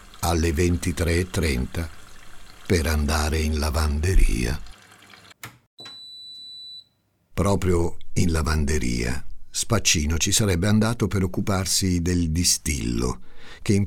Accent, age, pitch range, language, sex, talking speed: native, 60-79, 75-100 Hz, Italian, male, 80 wpm